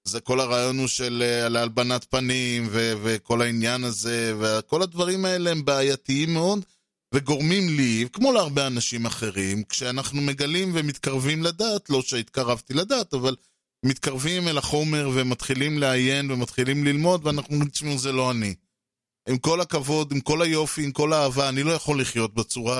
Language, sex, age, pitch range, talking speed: Hebrew, male, 20-39, 120-155 Hz, 150 wpm